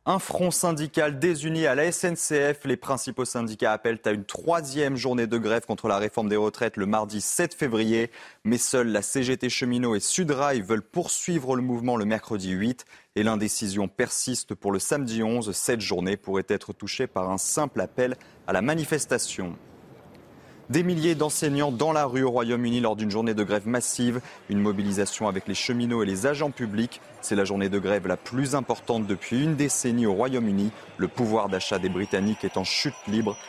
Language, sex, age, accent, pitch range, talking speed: French, male, 30-49, French, 105-145 Hz, 185 wpm